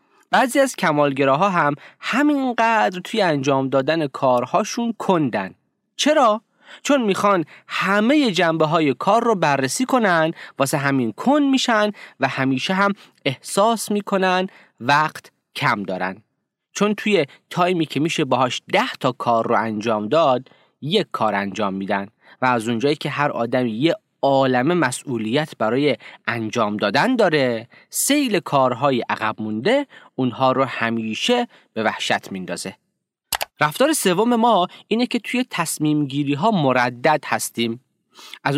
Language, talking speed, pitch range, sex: Persian, 130 wpm, 125-200 Hz, male